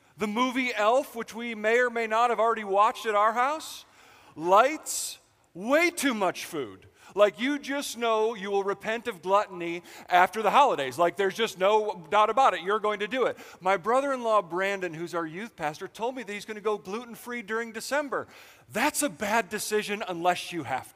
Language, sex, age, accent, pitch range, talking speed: English, male, 40-59, American, 150-225 Hz, 195 wpm